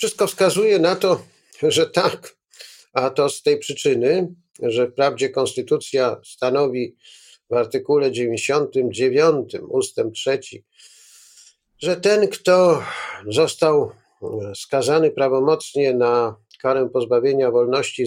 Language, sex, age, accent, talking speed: Polish, male, 50-69, native, 100 wpm